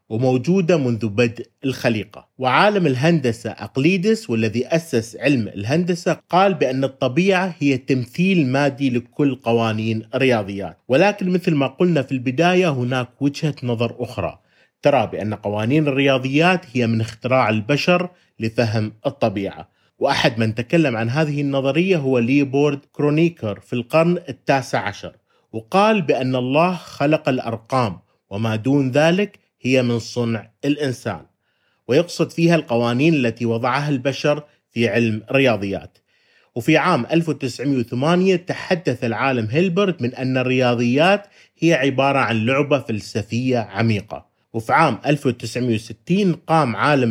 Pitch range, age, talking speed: 115-155 Hz, 30-49, 115 wpm